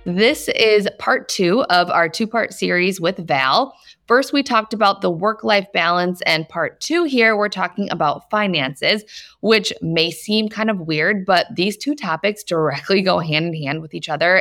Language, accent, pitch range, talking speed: English, American, 160-220 Hz, 170 wpm